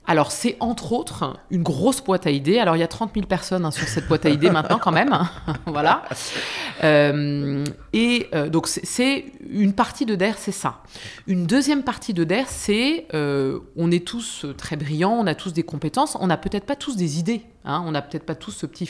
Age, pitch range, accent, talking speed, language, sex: 20-39, 160-215 Hz, French, 220 wpm, French, female